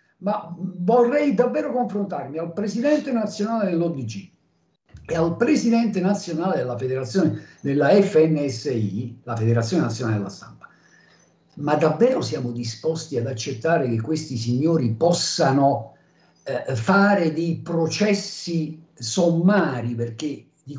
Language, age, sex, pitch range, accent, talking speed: Italian, 50-69, male, 160-210 Hz, native, 105 wpm